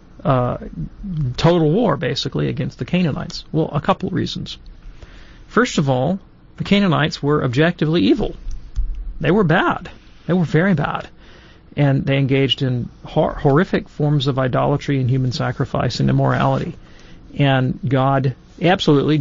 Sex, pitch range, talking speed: male, 135-170 Hz, 130 wpm